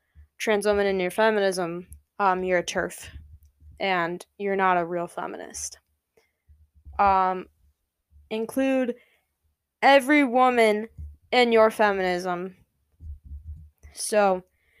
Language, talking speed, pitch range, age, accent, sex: English, 95 wpm, 190-235 Hz, 10-29, American, female